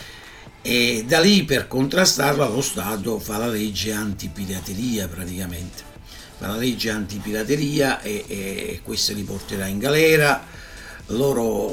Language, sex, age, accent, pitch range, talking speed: Italian, male, 60-79, native, 100-135 Hz, 130 wpm